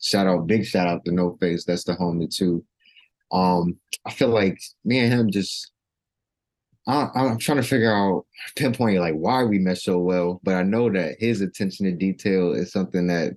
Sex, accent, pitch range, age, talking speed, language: male, American, 90-105 Hz, 20-39, 195 wpm, English